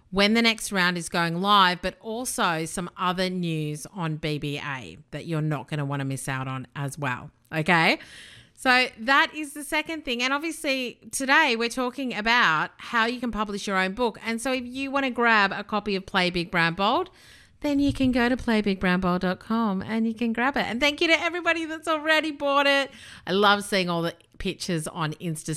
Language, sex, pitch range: English, female, 170-235 Hz